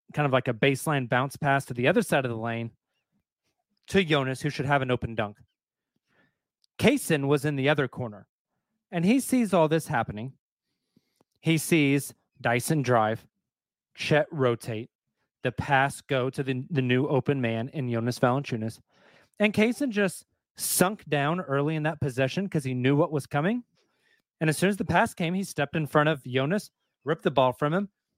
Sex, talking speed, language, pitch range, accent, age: male, 180 wpm, English, 125-165 Hz, American, 30-49